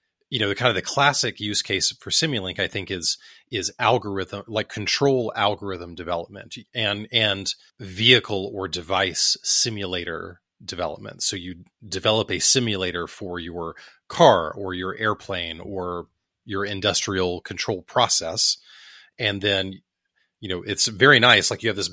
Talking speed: 150 wpm